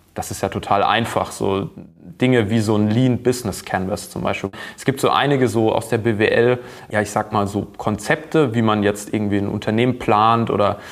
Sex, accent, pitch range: male, German, 105-120 Hz